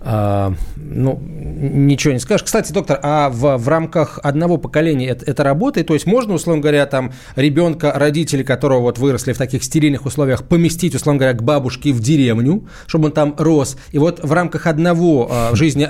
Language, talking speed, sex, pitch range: Russian, 190 wpm, male, 130-165 Hz